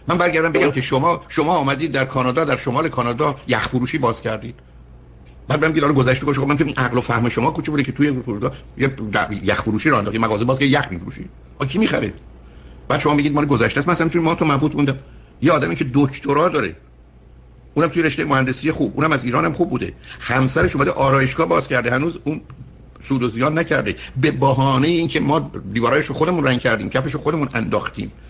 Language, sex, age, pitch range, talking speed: Persian, male, 50-69, 115-160 Hz, 200 wpm